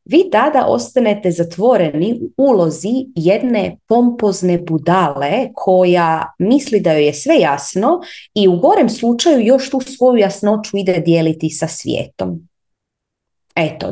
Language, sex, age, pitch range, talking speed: Croatian, female, 30-49, 165-220 Hz, 125 wpm